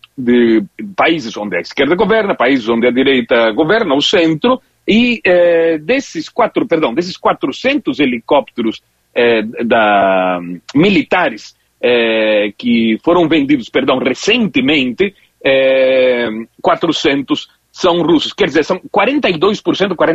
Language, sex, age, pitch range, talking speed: Portuguese, male, 40-59, 135-215 Hz, 115 wpm